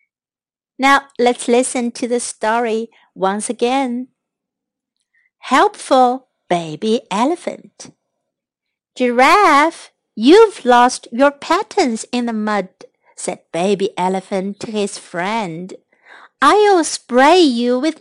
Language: Chinese